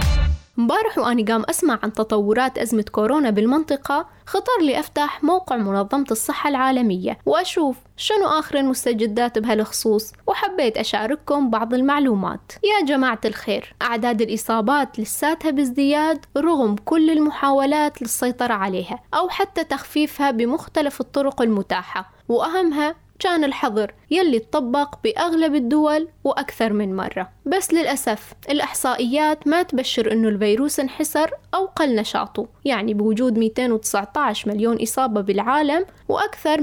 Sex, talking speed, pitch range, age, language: female, 115 wpm, 225-305 Hz, 10-29, Arabic